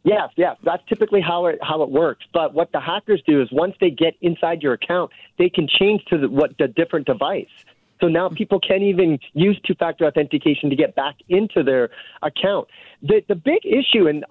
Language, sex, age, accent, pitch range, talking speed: English, male, 30-49, American, 155-210 Hz, 205 wpm